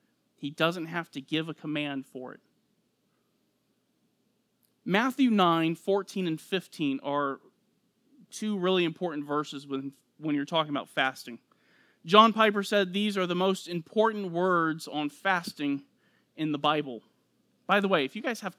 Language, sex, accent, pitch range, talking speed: English, male, American, 165-220 Hz, 150 wpm